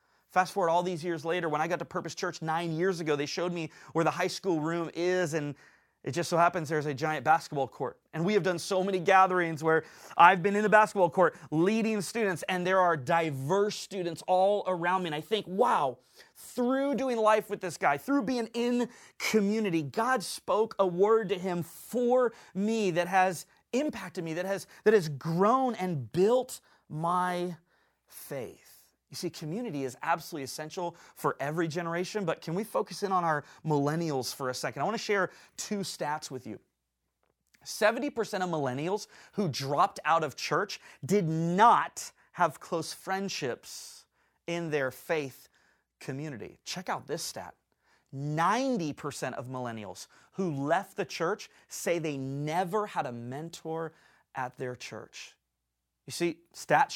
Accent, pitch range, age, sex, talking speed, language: American, 150-195 Hz, 30-49, male, 170 wpm, English